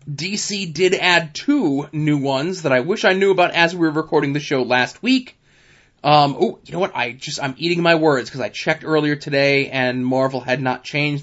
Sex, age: male, 20-39